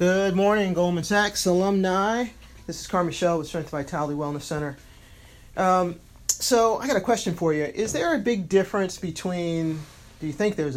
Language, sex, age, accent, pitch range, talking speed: English, male, 40-59, American, 140-180 Hz, 175 wpm